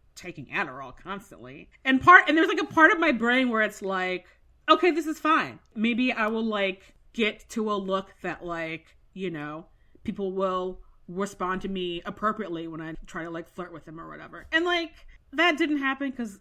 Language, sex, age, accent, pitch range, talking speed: English, female, 30-49, American, 170-235 Hz, 200 wpm